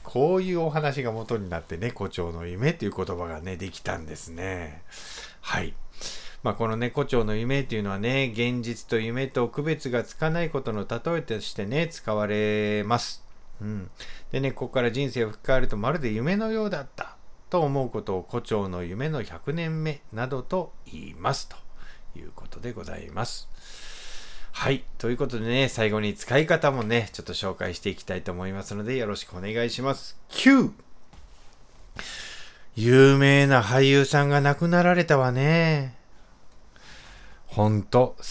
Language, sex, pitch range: Japanese, male, 105-140 Hz